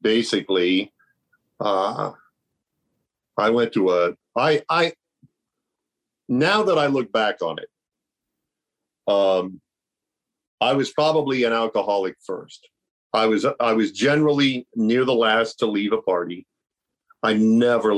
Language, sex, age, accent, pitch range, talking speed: English, male, 50-69, American, 95-120 Hz, 120 wpm